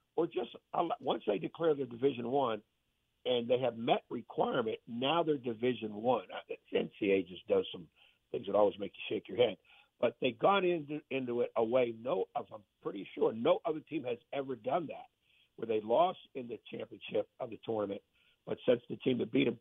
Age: 60-79